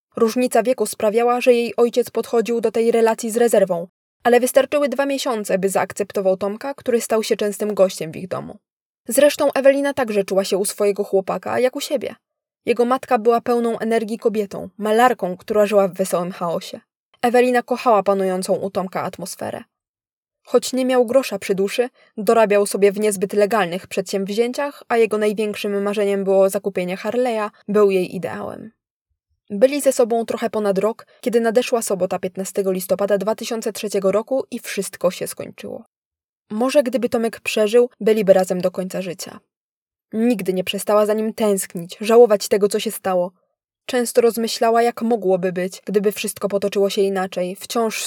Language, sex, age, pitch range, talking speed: Polish, female, 20-39, 200-240 Hz, 155 wpm